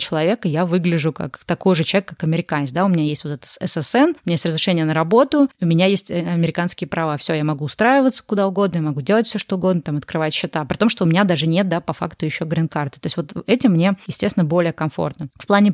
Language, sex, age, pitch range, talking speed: Russian, female, 20-39, 160-185 Hz, 245 wpm